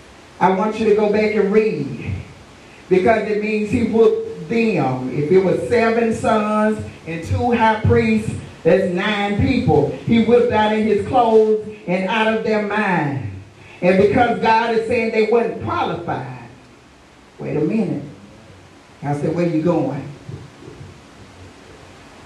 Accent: American